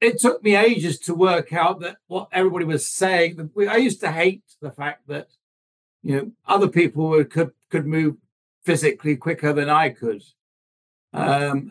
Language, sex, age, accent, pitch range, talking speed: English, male, 60-79, British, 140-185 Hz, 165 wpm